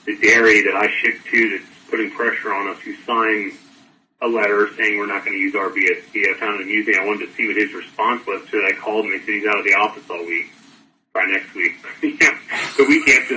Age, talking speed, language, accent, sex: 30-49, 250 wpm, English, American, male